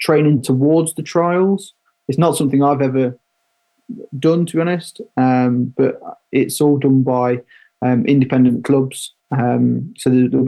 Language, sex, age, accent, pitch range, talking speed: English, male, 20-39, British, 125-145 Hz, 145 wpm